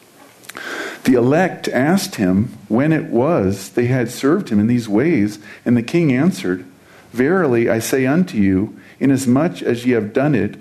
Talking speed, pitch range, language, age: 165 wpm, 105-130 Hz, English, 50-69